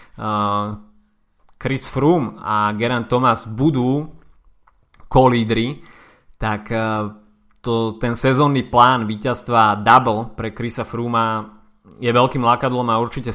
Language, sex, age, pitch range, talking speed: Slovak, male, 20-39, 110-135 Hz, 100 wpm